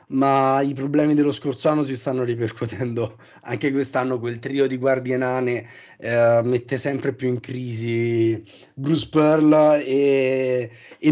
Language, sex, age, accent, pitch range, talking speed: Italian, male, 30-49, native, 125-150 Hz, 140 wpm